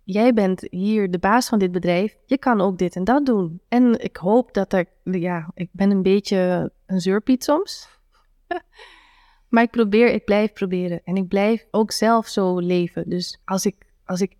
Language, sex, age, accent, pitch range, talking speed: Dutch, female, 20-39, Dutch, 190-235 Hz, 190 wpm